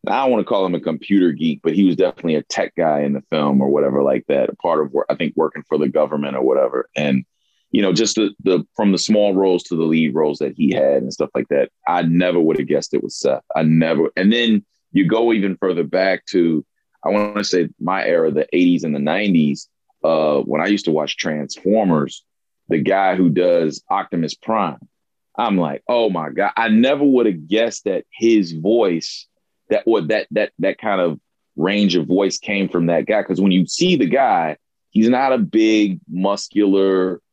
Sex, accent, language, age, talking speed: male, American, English, 30-49, 220 wpm